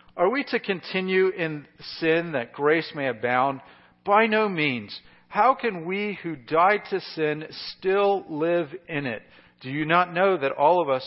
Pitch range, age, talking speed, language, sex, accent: 145-210 Hz, 50-69, 175 wpm, English, male, American